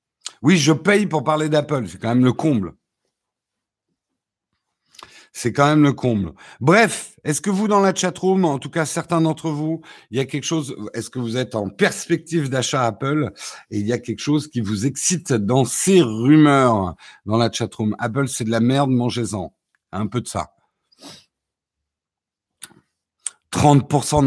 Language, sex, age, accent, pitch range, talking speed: French, male, 60-79, French, 120-160 Hz, 170 wpm